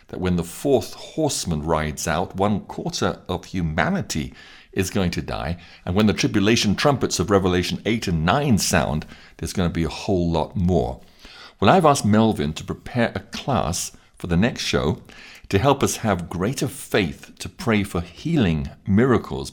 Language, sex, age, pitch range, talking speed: English, male, 60-79, 85-105 Hz, 175 wpm